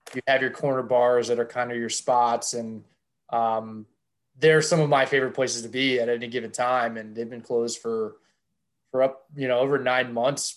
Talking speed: 210 wpm